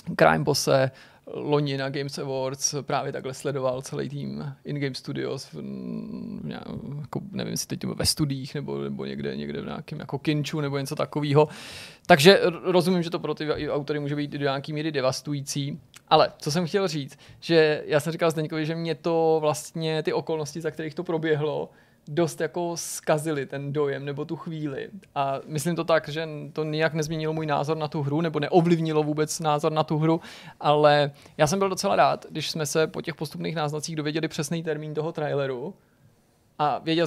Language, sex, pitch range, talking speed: Czech, male, 145-160 Hz, 180 wpm